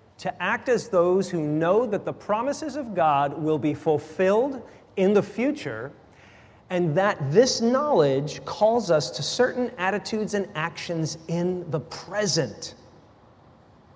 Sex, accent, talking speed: male, American, 135 wpm